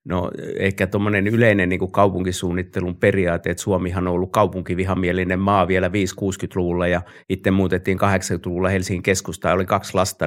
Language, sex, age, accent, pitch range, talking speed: Finnish, male, 50-69, native, 90-100 Hz, 150 wpm